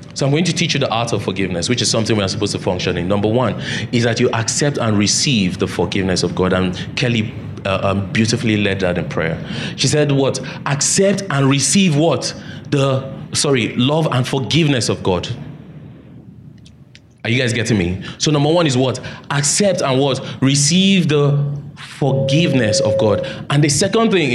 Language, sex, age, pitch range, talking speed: English, male, 30-49, 105-140 Hz, 185 wpm